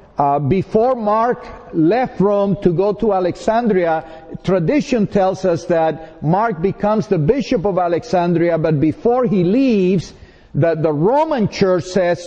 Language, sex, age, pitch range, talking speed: English, male, 50-69, 170-220 Hz, 135 wpm